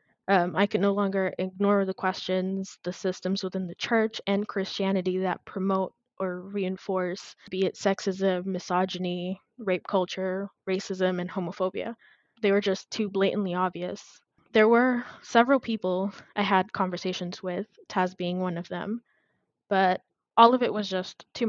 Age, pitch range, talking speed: 20-39, 185-200 Hz, 150 wpm